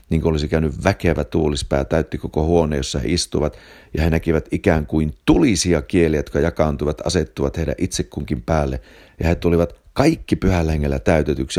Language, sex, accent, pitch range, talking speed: Finnish, male, native, 75-90 Hz, 165 wpm